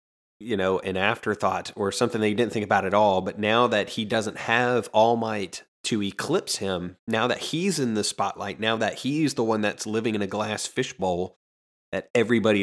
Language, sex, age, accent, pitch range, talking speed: English, male, 30-49, American, 95-110 Hz, 205 wpm